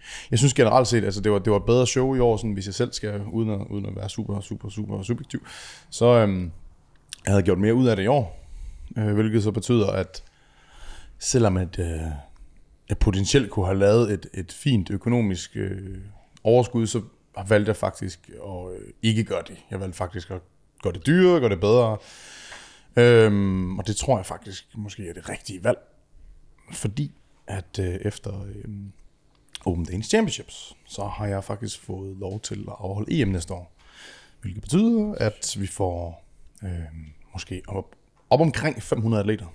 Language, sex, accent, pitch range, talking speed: Danish, male, native, 90-110 Hz, 180 wpm